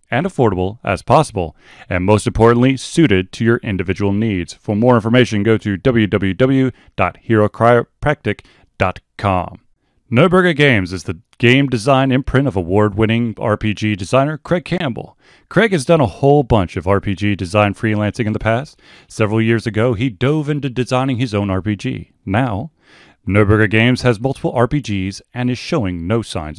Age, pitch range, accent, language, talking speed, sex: 30-49, 100-130 Hz, American, English, 150 wpm, male